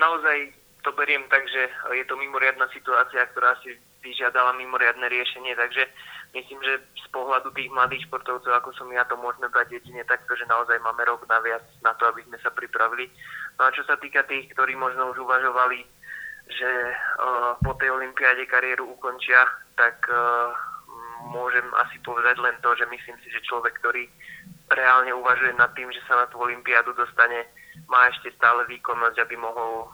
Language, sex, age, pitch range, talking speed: Slovak, male, 20-39, 115-130 Hz, 170 wpm